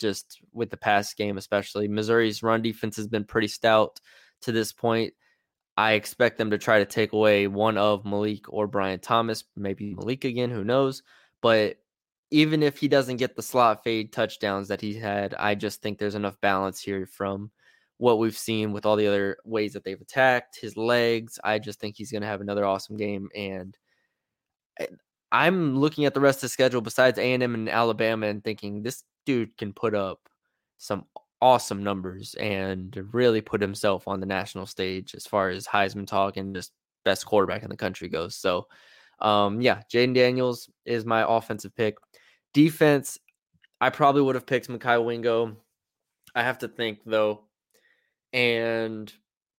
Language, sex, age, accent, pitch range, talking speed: English, male, 20-39, American, 105-120 Hz, 175 wpm